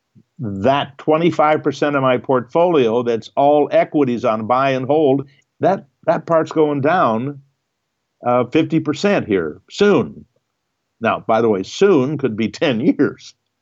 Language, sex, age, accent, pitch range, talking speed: English, male, 60-79, American, 125-165 Hz, 130 wpm